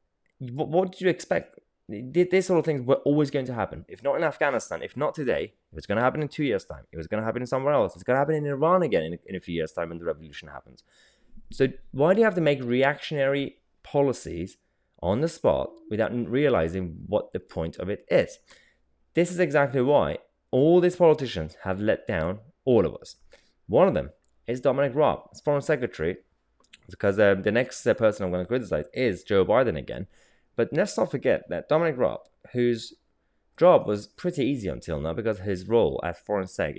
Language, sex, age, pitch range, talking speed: English, male, 20-39, 90-140 Hz, 210 wpm